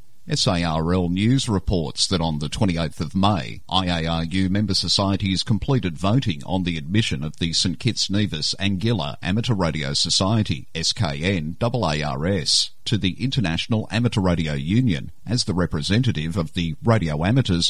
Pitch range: 85-110 Hz